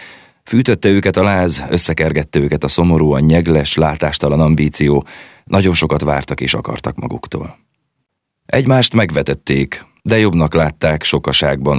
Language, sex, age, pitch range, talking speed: Hungarian, male, 30-49, 70-85 Hz, 120 wpm